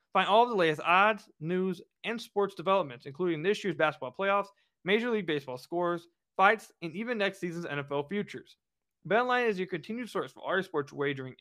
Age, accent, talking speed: 20-39, American, 180 wpm